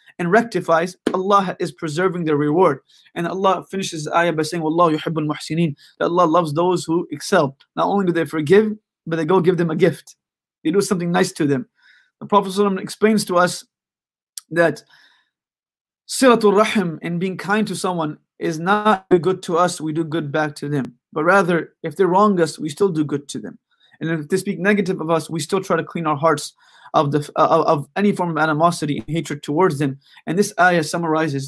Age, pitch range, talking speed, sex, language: 20-39, 155-190 Hz, 200 wpm, male, English